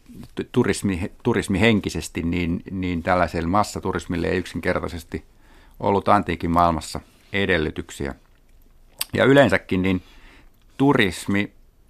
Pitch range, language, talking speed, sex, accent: 85-100 Hz, Finnish, 80 wpm, male, native